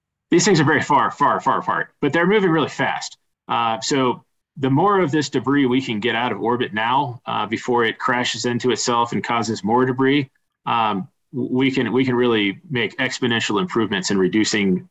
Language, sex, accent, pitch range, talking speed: English, male, American, 115-140 Hz, 190 wpm